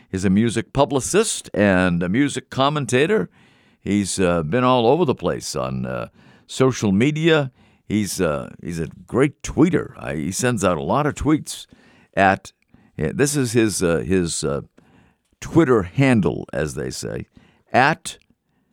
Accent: American